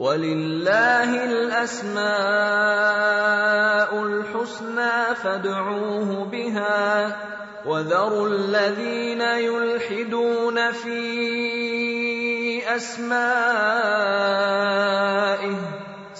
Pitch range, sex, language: 130-210 Hz, male, English